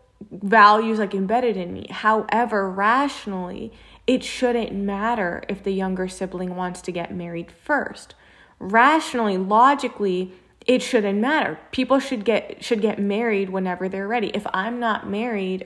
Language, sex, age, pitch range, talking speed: English, female, 20-39, 190-235 Hz, 140 wpm